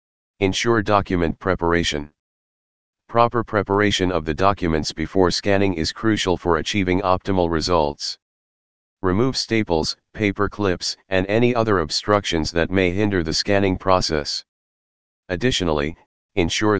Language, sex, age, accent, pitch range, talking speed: English, male, 40-59, American, 80-100 Hz, 115 wpm